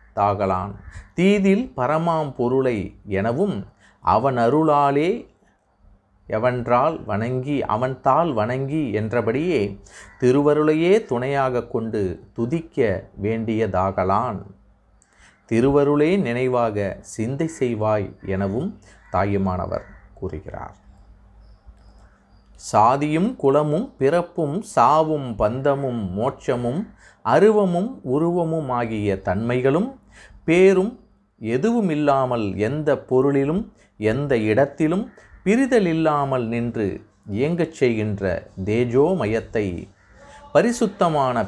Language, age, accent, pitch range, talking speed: Tamil, 30-49, native, 100-155 Hz, 70 wpm